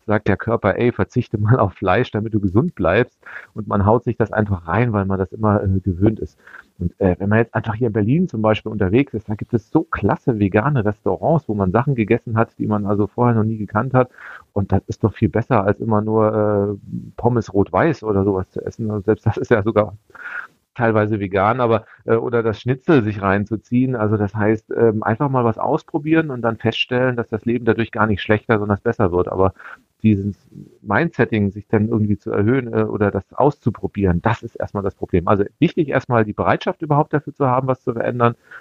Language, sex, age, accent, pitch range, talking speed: German, male, 40-59, German, 105-125 Hz, 220 wpm